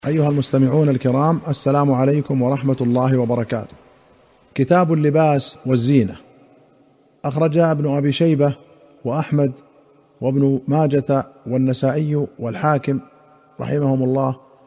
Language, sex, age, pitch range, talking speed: Arabic, male, 40-59, 130-150 Hz, 90 wpm